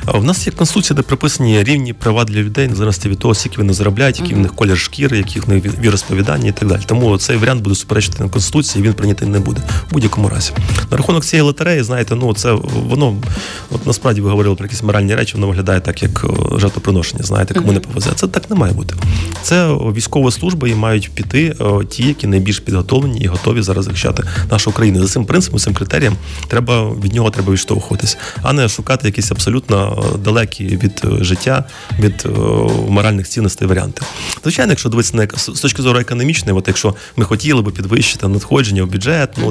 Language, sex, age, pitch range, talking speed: Ukrainian, male, 30-49, 100-130 Hz, 190 wpm